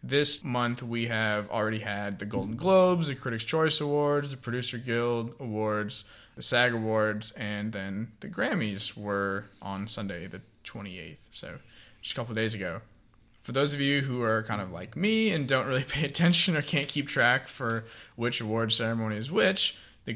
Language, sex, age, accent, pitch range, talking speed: English, male, 20-39, American, 105-125 Hz, 180 wpm